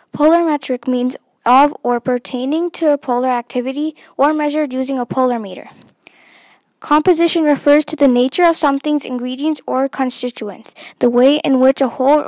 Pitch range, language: 250-295 Hz, English